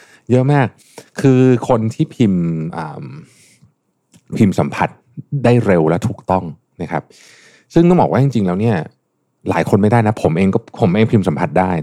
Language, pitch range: Thai, 85-115 Hz